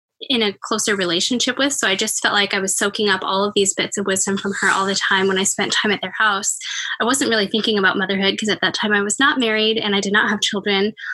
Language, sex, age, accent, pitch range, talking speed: English, female, 10-29, American, 200-235 Hz, 280 wpm